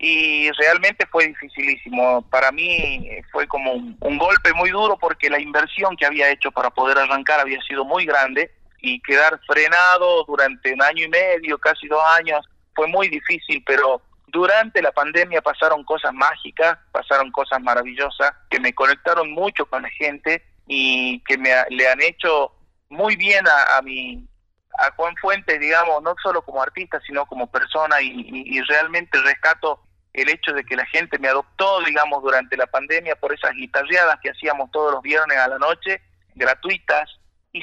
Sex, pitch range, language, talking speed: male, 140-185 Hz, Spanish, 170 wpm